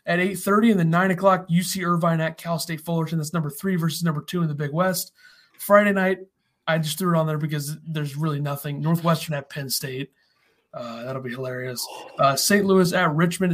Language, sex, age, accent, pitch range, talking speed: English, male, 30-49, American, 155-180 Hz, 210 wpm